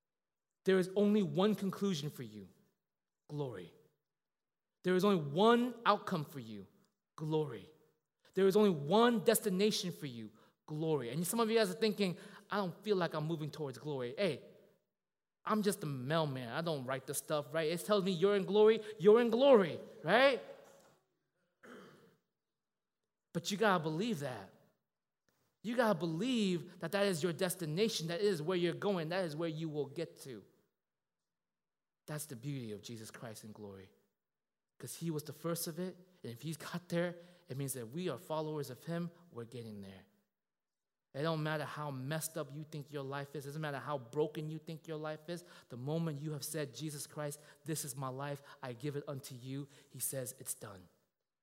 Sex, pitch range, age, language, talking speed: male, 135-185 Hz, 20-39, English, 185 wpm